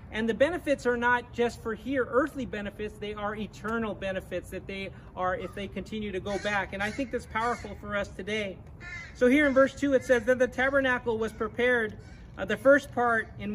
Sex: male